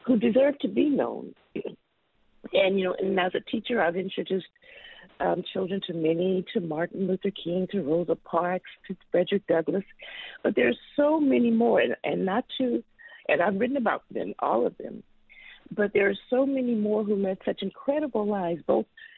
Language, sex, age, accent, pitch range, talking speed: English, female, 50-69, American, 180-260 Hz, 180 wpm